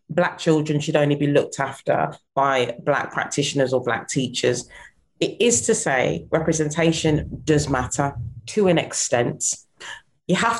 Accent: British